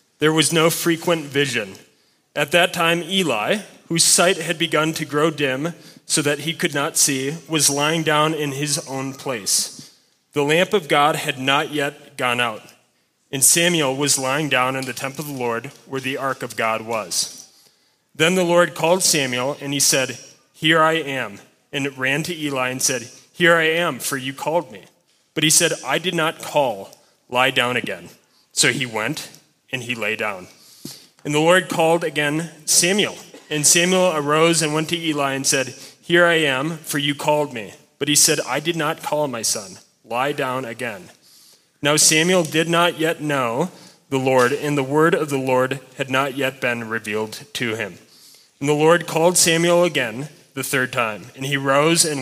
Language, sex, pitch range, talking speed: English, male, 135-165 Hz, 190 wpm